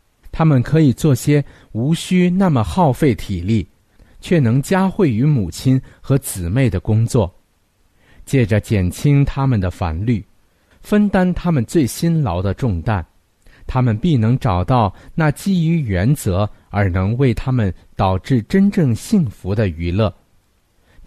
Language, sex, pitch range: Chinese, male, 95-145 Hz